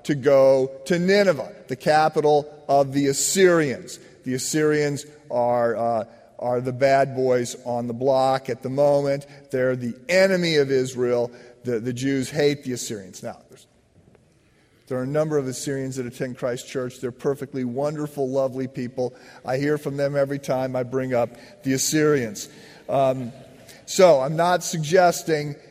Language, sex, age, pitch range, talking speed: English, male, 40-59, 130-160 Hz, 155 wpm